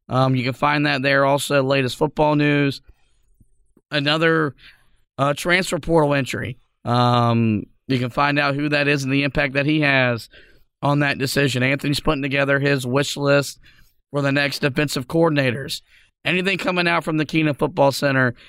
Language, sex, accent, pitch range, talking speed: English, male, American, 140-165 Hz, 165 wpm